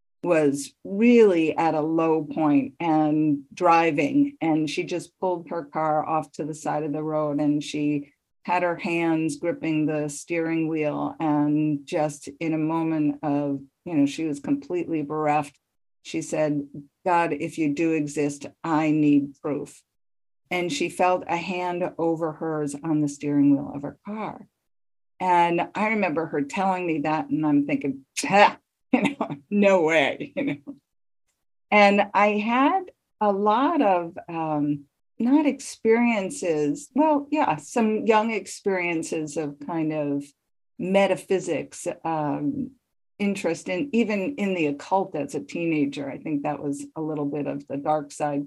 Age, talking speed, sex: 50-69, 150 wpm, female